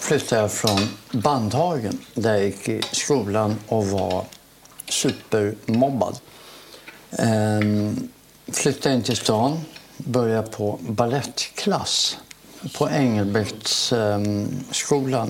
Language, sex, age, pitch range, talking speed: Swedish, male, 60-79, 105-135 Hz, 85 wpm